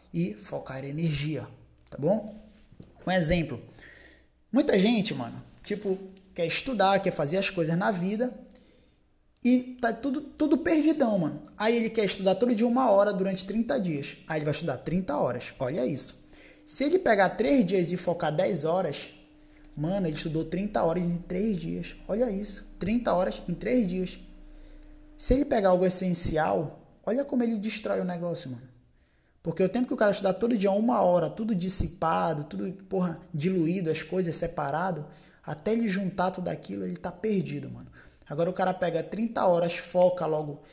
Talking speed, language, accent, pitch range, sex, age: 170 wpm, Portuguese, Brazilian, 165-205 Hz, male, 20-39